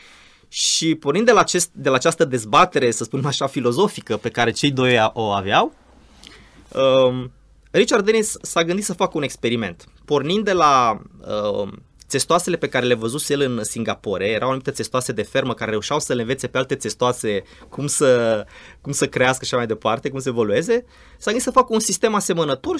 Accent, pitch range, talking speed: native, 125-195 Hz, 175 wpm